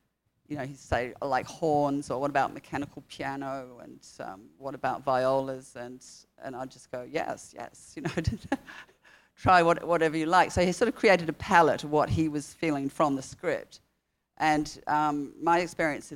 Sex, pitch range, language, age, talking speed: female, 140-160 Hz, English, 40-59, 185 wpm